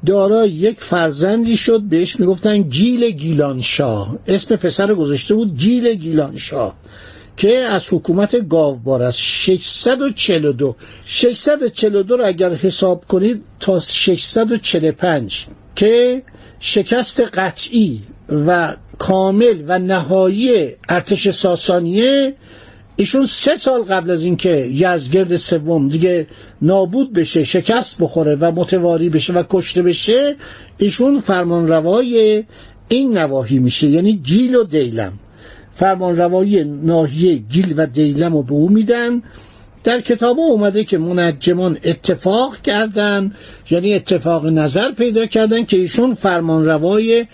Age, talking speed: 60-79, 110 wpm